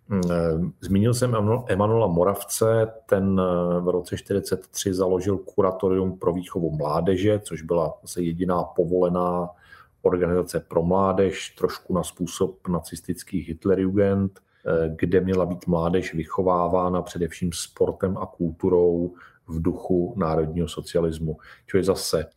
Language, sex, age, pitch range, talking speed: Slovak, male, 40-59, 85-95 Hz, 115 wpm